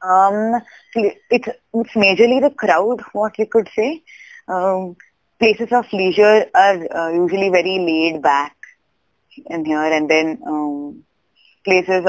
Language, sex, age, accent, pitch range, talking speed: English, female, 20-39, Indian, 150-185 Hz, 130 wpm